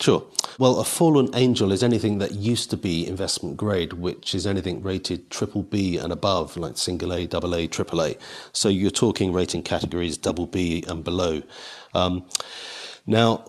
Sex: male